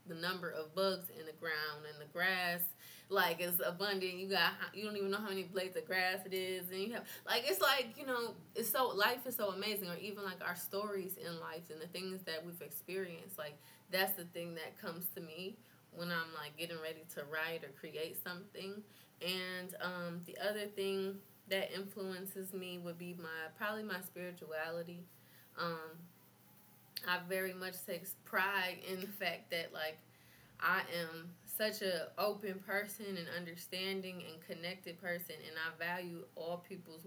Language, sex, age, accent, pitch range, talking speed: English, female, 20-39, American, 165-190 Hz, 180 wpm